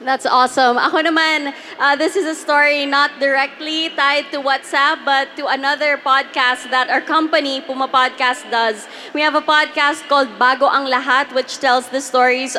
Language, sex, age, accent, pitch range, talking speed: English, female, 20-39, Filipino, 255-310 Hz, 170 wpm